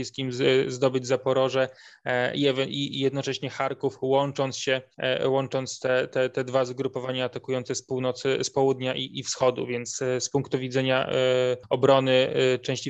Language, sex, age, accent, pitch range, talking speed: Polish, male, 20-39, native, 130-140 Hz, 125 wpm